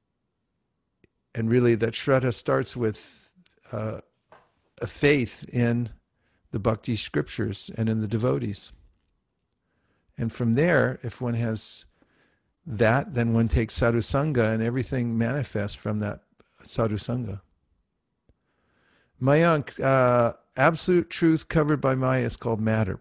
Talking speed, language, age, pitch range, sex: 115 wpm, English, 50-69, 110-135 Hz, male